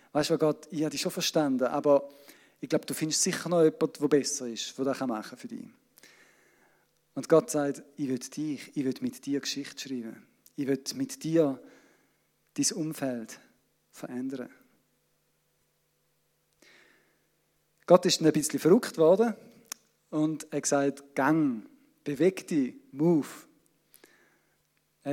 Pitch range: 140-165 Hz